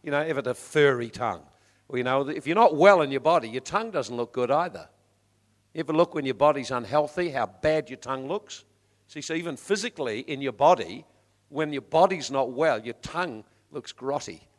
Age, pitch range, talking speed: 50-69, 125-160 Hz, 200 wpm